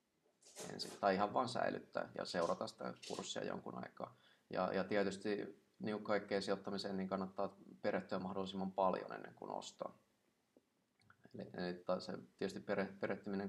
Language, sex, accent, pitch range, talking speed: Finnish, male, native, 95-100 Hz, 140 wpm